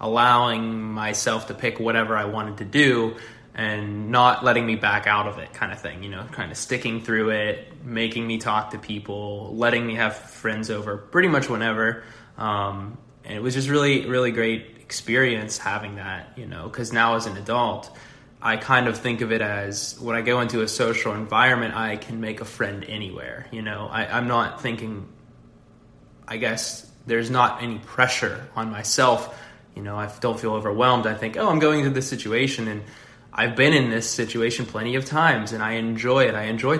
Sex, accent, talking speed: male, American, 195 wpm